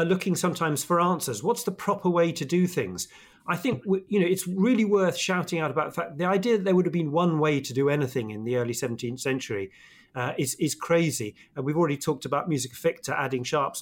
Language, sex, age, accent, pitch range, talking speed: English, male, 40-59, British, 130-170 Hz, 230 wpm